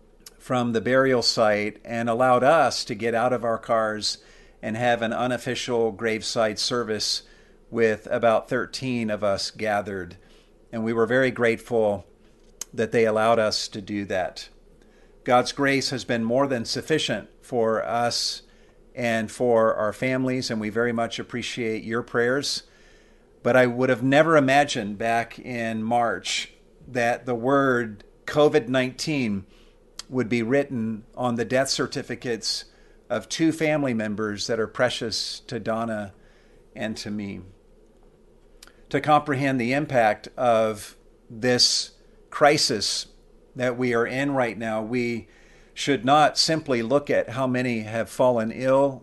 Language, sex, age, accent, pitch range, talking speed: English, male, 50-69, American, 110-130 Hz, 140 wpm